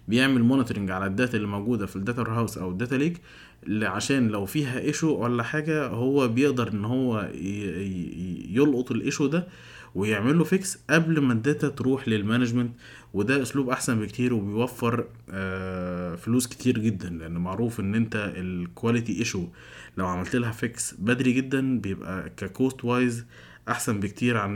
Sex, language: male, Arabic